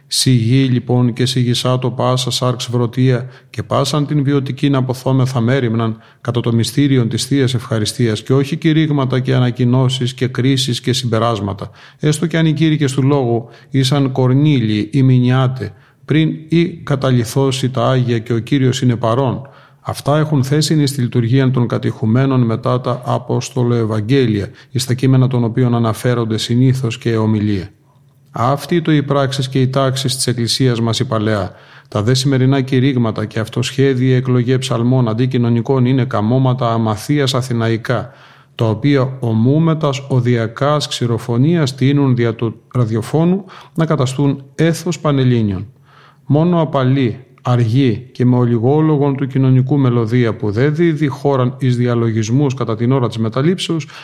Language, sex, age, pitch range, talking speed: Greek, male, 40-59, 120-140 Hz, 140 wpm